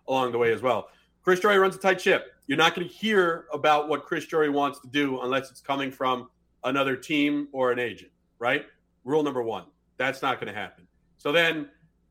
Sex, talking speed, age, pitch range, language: male, 215 wpm, 40-59, 145-190 Hz, English